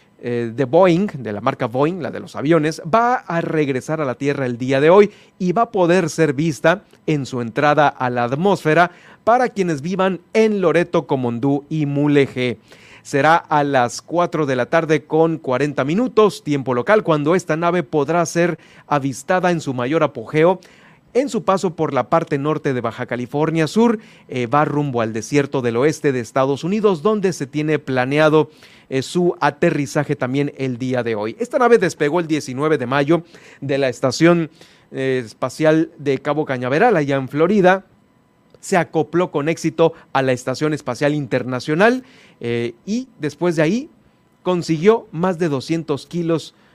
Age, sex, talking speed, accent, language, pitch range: 40-59, male, 165 wpm, Mexican, Spanish, 135-175 Hz